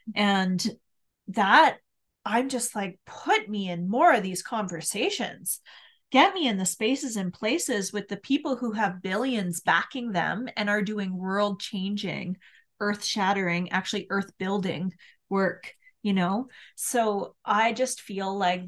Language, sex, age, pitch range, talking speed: English, female, 30-49, 185-230 Hz, 145 wpm